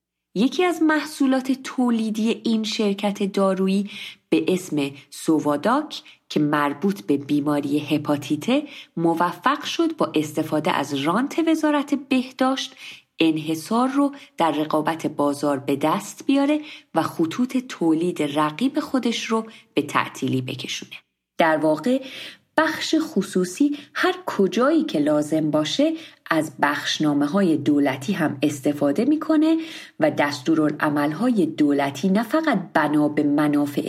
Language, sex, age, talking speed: Persian, female, 30-49, 115 wpm